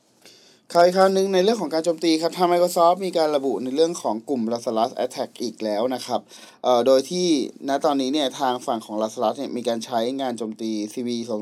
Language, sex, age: Thai, male, 20-39